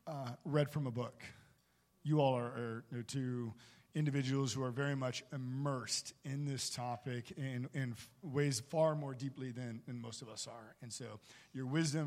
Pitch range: 135-180 Hz